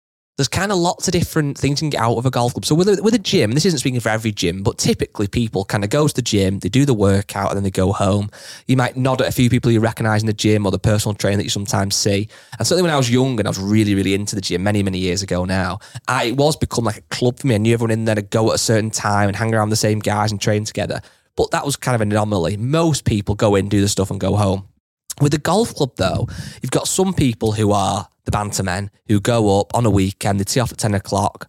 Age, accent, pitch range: 20-39, British, 100-135 Hz